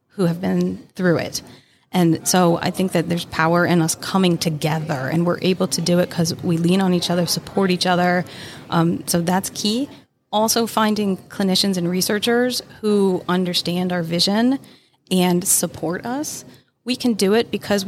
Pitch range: 170-205 Hz